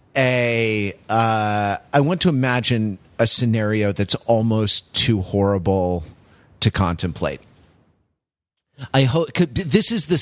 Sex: male